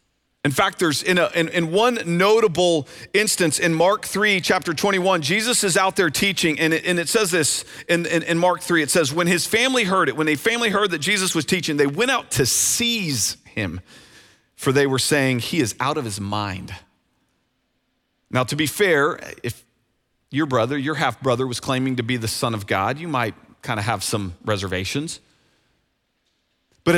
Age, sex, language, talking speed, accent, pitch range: 40-59, male, English, 195 wpm, American, 145-190 Hz